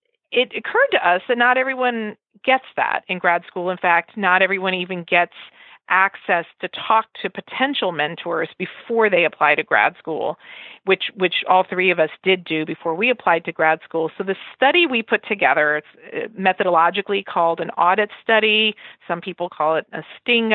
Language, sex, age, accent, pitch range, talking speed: English, female, 40-59, American, 170-225 Hz, 180 wpm